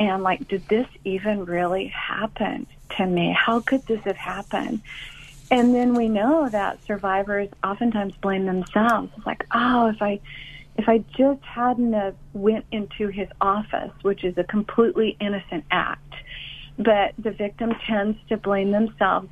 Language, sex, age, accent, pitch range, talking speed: English, female, 50-69, American, 190-230 Hz, 155 wpm